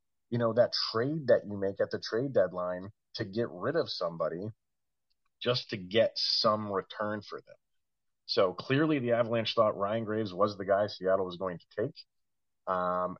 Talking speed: 175 wpm